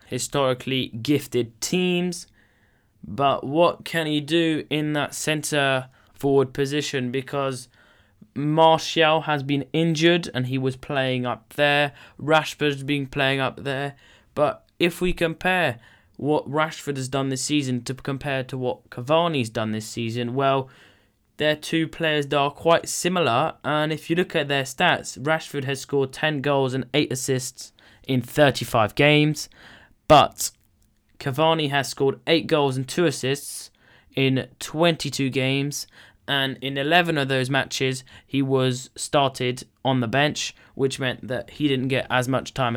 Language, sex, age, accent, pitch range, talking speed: English, male, 20-39, British, 125-150 Hz, 150 wpm